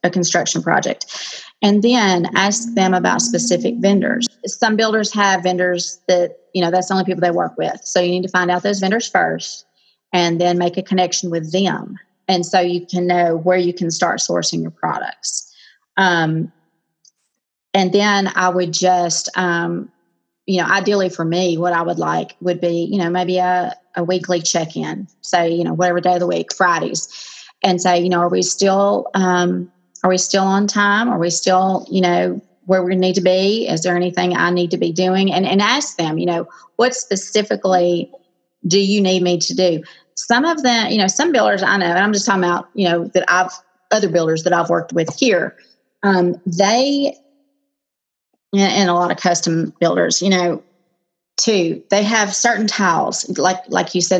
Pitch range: 175-200 Hz